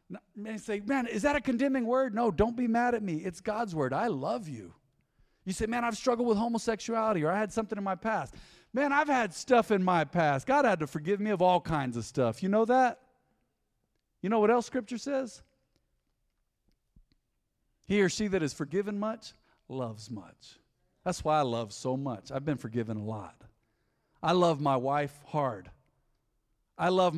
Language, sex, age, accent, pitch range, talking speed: English, male, 40-59, American, 140-235 Hz, 190 wpm